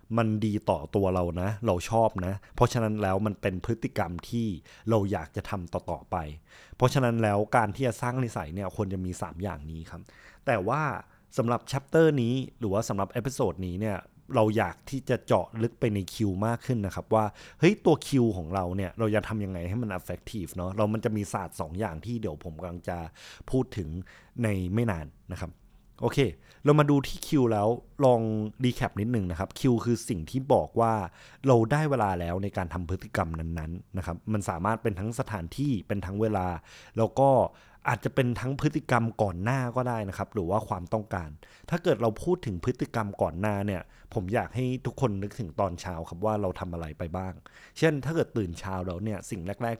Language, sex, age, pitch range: Thai, male, 20-39, 90-120 Hz